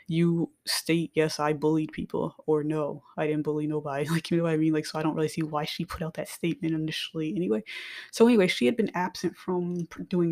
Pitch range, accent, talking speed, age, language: 155-185 Hz, American, 235 wpm, 20-39, English